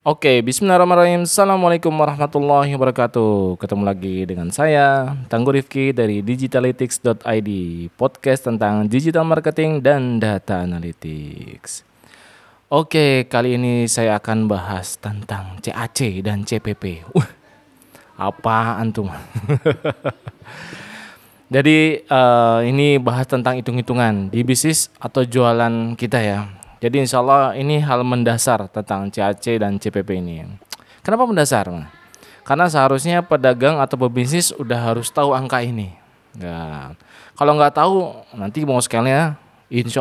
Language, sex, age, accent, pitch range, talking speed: Indonesian, male, 20-39, native, 110-140 Hz, 115 wpm